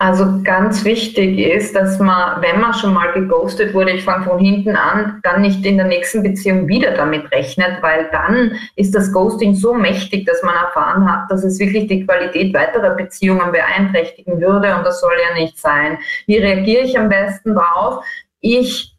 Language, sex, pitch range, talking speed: German, female, 190-230 Hz, 185 wpm